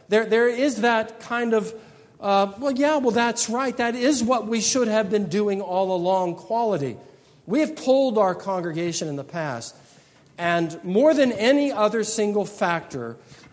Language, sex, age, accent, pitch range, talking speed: English, male, 50-69, American, 160-225 Hz, 170 wpm